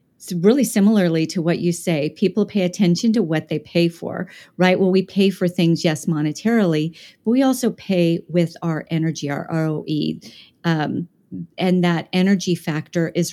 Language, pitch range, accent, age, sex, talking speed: English, 165-195 Hz, American, 40-59, female, 170 wpm